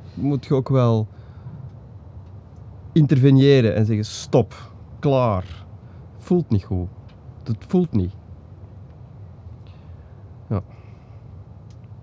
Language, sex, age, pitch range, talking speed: Dutch, male, 30-49, 105-130 Hz, 80 wpm